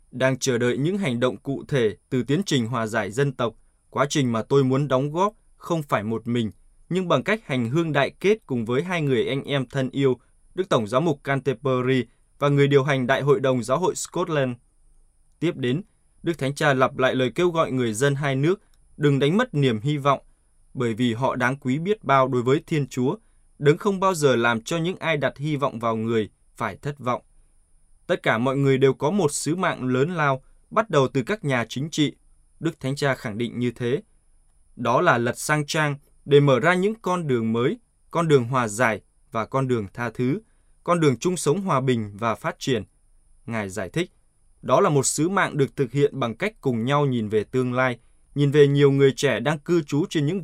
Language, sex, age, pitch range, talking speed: Vietnamese, male, 20-39, 125-150 Hz, 220 wpm